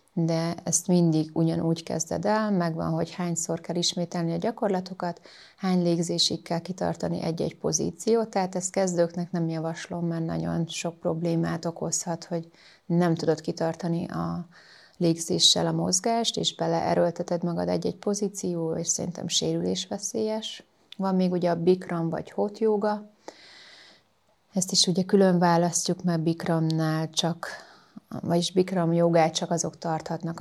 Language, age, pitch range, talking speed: Hungarian, 30-49, 165-190 Hz, 135 wpm